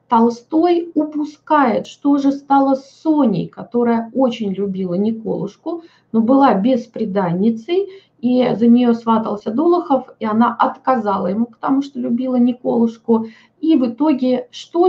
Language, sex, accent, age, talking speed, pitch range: Russian, female, native, 20-39, 125 wpm, 205-260 Hz